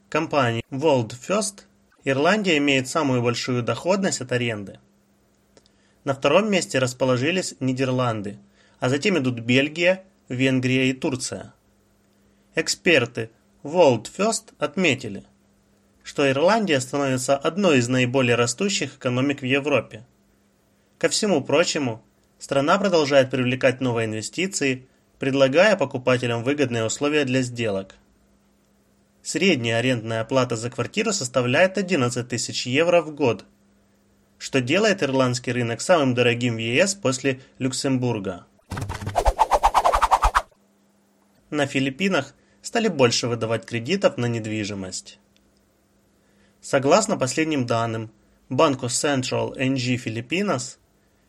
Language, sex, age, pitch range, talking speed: Russian, male, 20-39, 115-145 Hz, 100 wpm